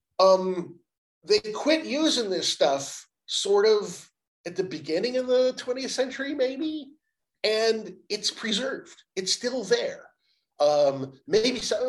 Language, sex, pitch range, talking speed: English, male, 140-225 Hz, 125 wpm